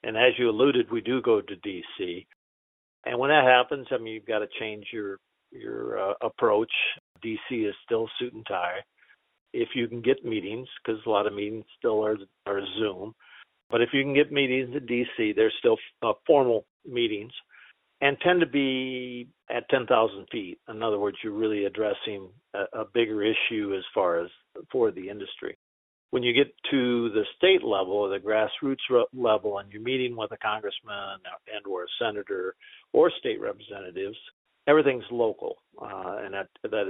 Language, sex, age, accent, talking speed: English, male, 50-69, American, 175 wpm